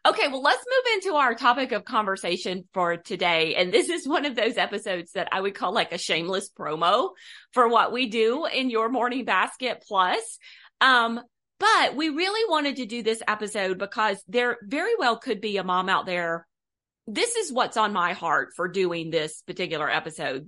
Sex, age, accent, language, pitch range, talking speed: female, 30-49, American, English, 180-245 Hz, 190 wpm